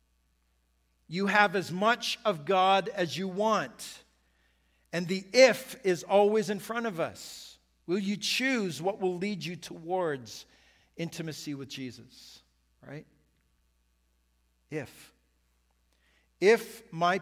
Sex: male